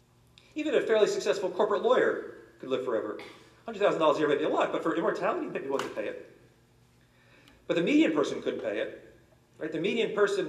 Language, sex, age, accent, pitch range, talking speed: English, male, 50-69, American, 135-185 Hz, 200 wpm